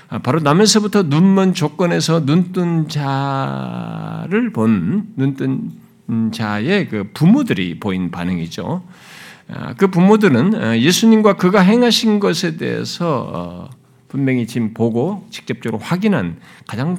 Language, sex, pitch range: Korean, male, 110-185 Hz